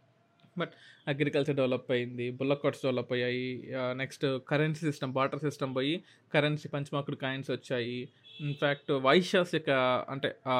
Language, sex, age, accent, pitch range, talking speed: Telugu, male, 20-39, native, 130-180 Hz, 125 wpm